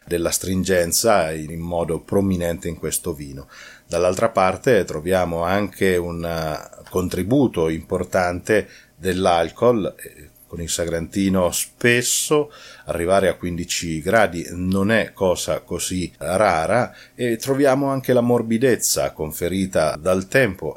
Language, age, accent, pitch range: Italian, 40-59, native, 85-105 Hz